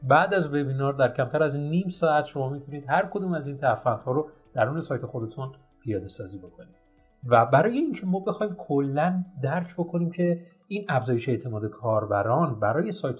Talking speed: 175 wpm